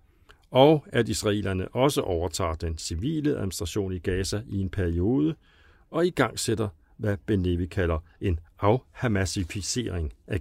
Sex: male